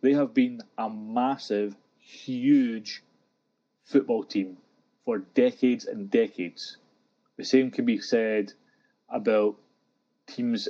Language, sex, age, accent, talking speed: English, male, 30-49, British, 105 wpm